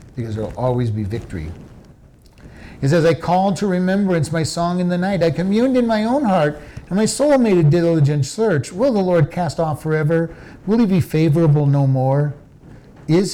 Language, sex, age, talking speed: English, male, 50-69, 195 wpm